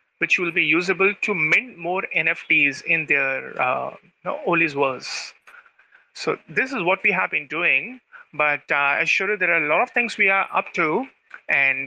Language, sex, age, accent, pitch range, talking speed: English, male, 30-49, Indian, 160-210 Hz, 185 wpm